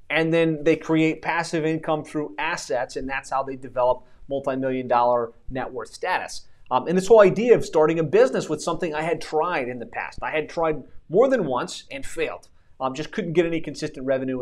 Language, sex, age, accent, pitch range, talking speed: English, male, 30-49, American, 140-180 Hz, 210 wpm